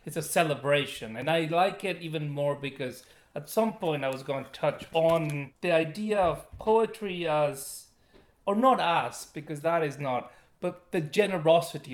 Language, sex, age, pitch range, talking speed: English, male, 30-49, 140-170 Hz, 170 wpm